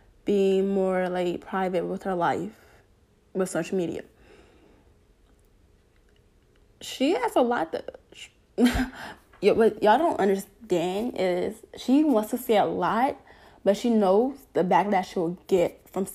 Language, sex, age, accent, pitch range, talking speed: English, female, 10-29, American, 195-245 Hz, 135 wpm